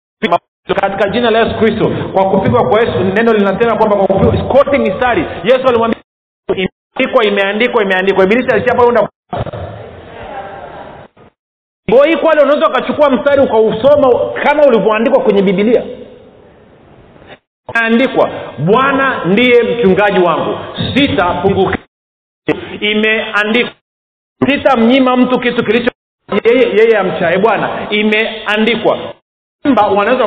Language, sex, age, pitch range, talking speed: Swahili, male, 40-59, 200-255 Hz, 105 wpm